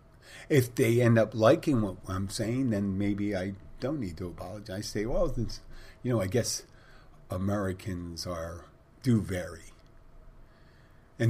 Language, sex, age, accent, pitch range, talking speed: English, male, 50-69, American, 90-110 Hz, 150 wpm